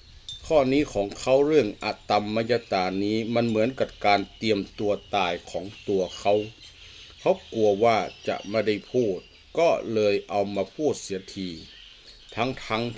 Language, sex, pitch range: Thai, male, 100-130 Hz